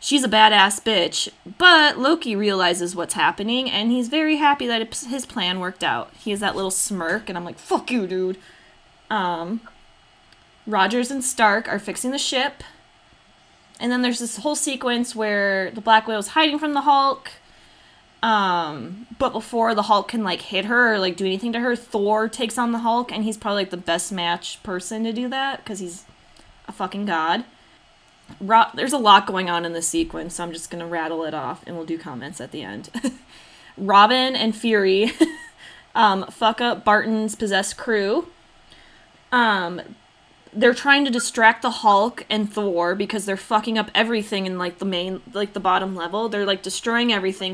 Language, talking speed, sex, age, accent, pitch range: English, 185 wpm, female, 20-39, American, 190-240 Hz